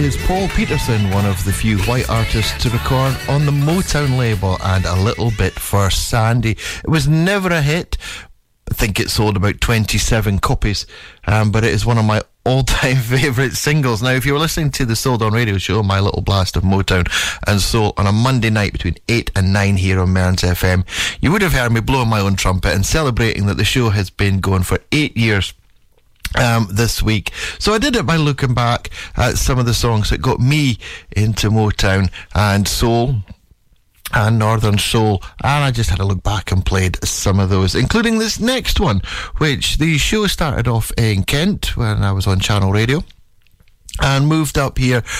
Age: 30-49